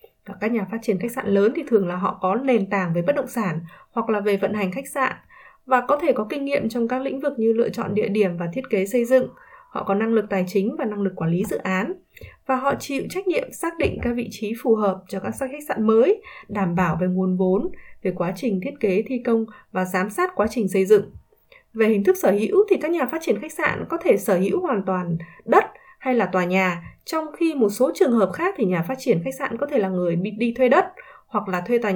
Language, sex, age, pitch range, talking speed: Vietnamese, female, 20-39, 195-275 Hz, 265 wpm